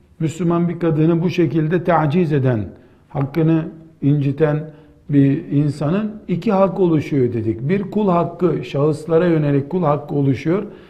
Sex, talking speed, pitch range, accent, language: male, 125 wpm, 145-180 Hz, native, Turkish